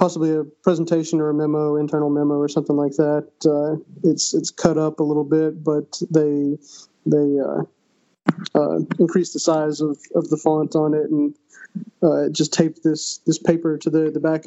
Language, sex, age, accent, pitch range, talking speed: English, male, 20-39, American, 150-165 Hz, 185 wpm